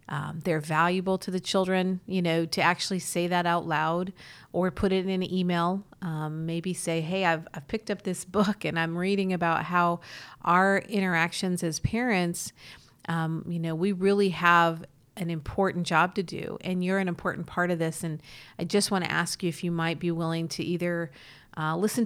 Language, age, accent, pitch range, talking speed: English, 40-59, American, 165-195 Hz, 200 wpm